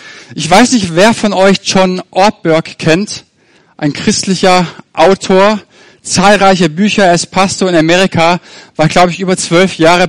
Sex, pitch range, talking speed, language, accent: male, 165-205 Hz, 150 wpm, German, German